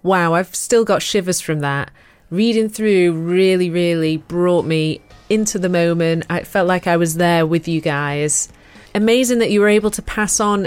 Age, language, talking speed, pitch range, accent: 30-49, English, 185 wpm, 165-200 Hz, British